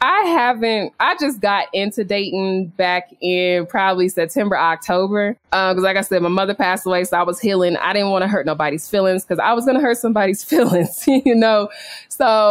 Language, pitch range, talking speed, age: English, 180-230 Hz, 205 wpm, 20-39